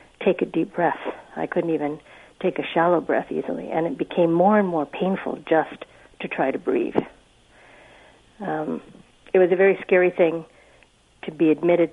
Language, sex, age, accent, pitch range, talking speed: English, female, 60-79, American, 155-180 Hz, 170 wpm